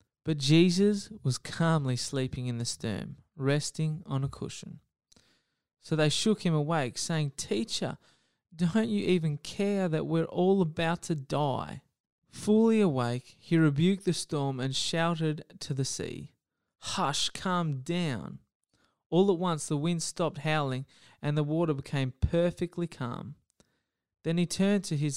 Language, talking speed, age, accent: English, 145 wpm, 20-39, Australian